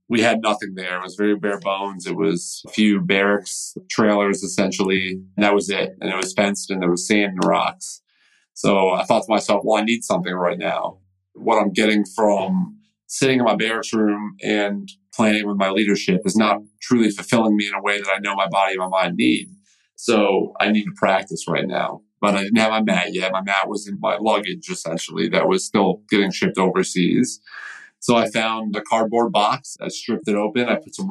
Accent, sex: American, male